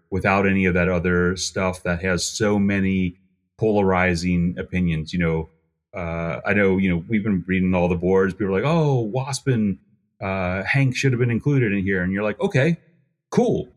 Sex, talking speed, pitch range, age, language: male, 190 wpm, 90-135 Hz, 30-49, English